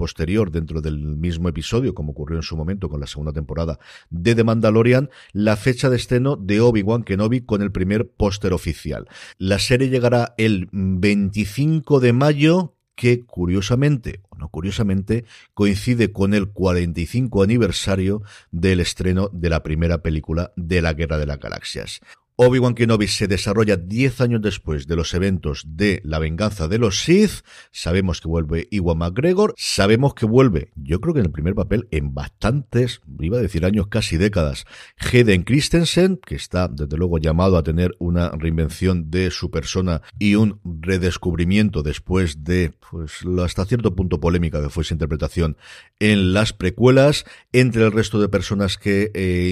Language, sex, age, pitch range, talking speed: Spanish, male, 50-69, 85-110 Hz, 165 wpm